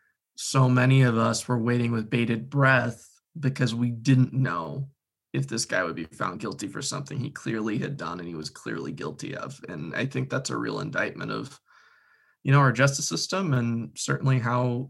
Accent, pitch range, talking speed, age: American, 120-135 Hz, 195 wpm, 20-39